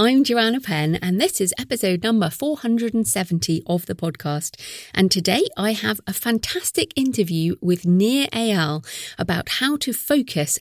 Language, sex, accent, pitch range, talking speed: English, female, British, 175-220 Hz, 145 wpm